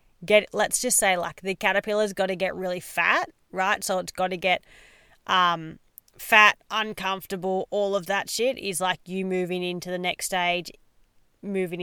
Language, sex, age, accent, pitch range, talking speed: English, female, 30-49, Australian, 175-200 Hz, 170 wpm